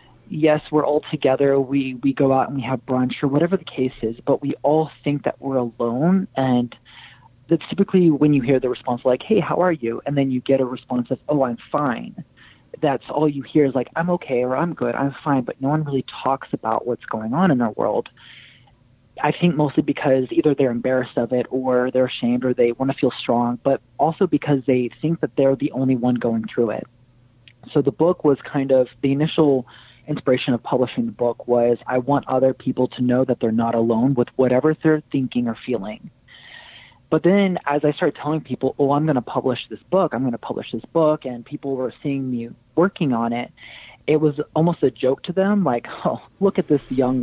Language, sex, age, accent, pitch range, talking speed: English, male, 30-49, American, 125-150 Hz, 220 wpm